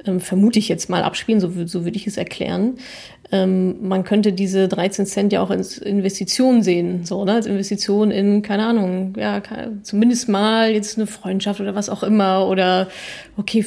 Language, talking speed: German, 175 wpm